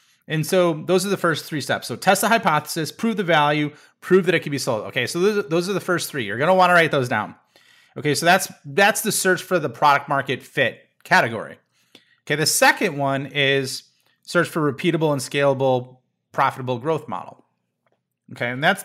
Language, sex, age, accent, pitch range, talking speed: English, male, 30-49, American, 135-180 Hz, 195 wpm